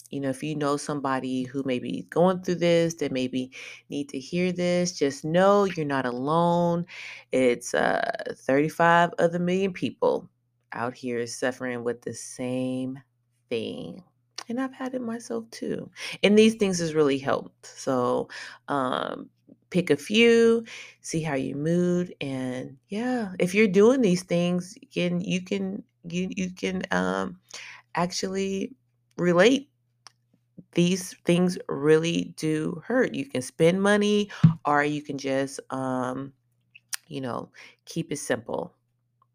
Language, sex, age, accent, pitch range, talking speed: English, female, 30-49, American, 135-200 Hz, 145 wpm